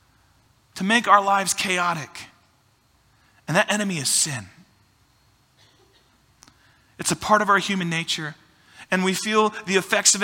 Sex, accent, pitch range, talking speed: male, American, 120-195 Hz, 135 wpm